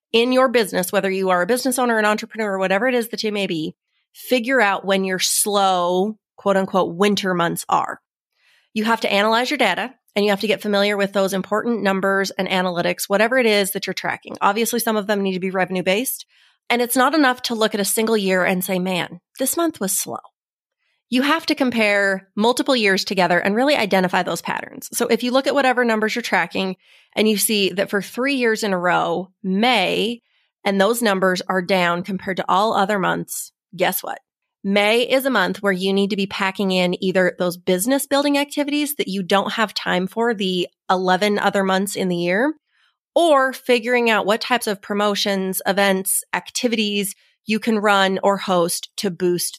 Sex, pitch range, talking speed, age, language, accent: female, 190-235 Hz, 205 wpm, 30-49, English, American